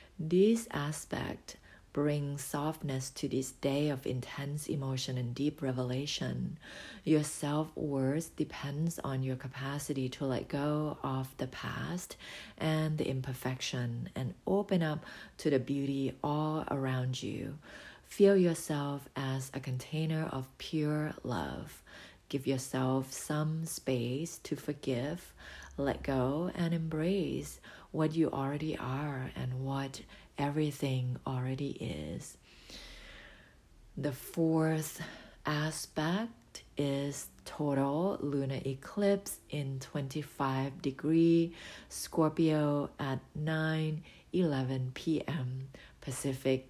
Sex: female